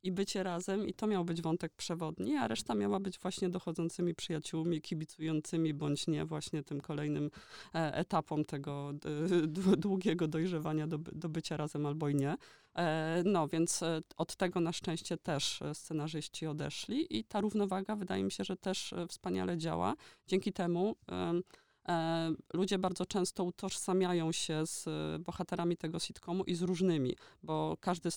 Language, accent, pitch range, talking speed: Polish, native, 155-180 Hz, 145 wpm